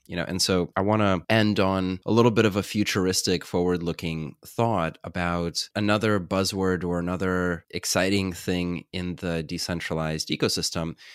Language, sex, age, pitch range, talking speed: English, male, 30-49, 80-95 Hz, 150 wpm